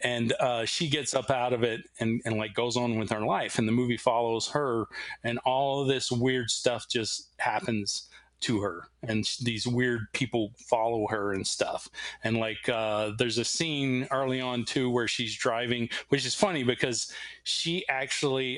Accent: American